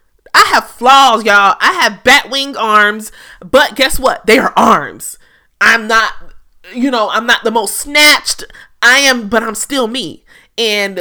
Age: 30-49